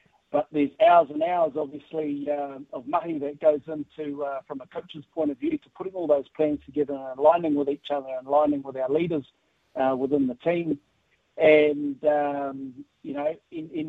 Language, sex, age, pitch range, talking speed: English, male, 50-69, 140-155 Hz, 195 wpm